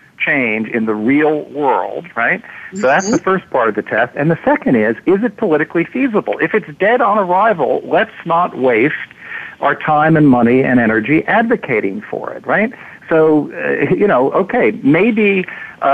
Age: 50-69